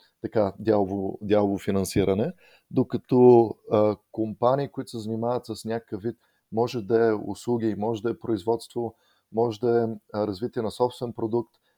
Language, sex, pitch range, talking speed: Bulgarian, male, 100-115 Hz, 145 wpm